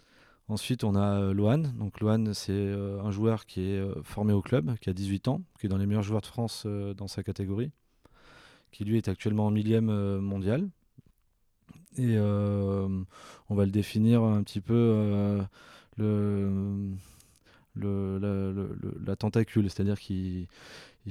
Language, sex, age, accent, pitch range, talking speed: French, male, 20-39, French, 100-115 Hz, 155 wpm